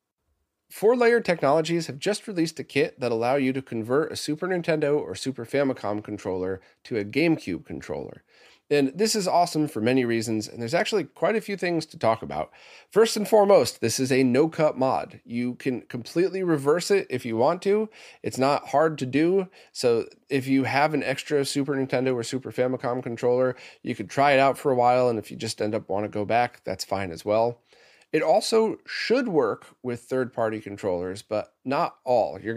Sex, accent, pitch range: male, American, 105-140 Hz